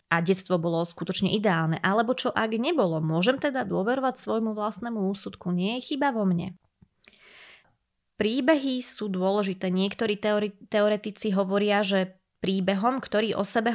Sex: female